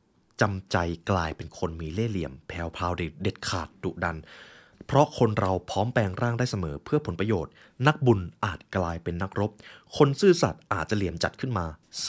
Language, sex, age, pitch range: Thai, male, 20-39, 90-125 Hz